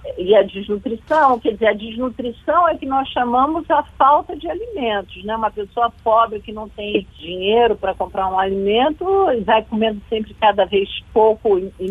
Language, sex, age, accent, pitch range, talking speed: Portuguese, female, 50-69, Brazilian, 215-330 Hz, 170 wpm